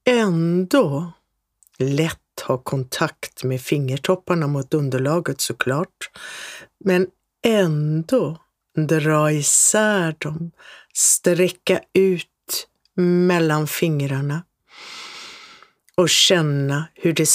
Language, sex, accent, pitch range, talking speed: Swedish, female, native, 145-180 Hz, 75 wpm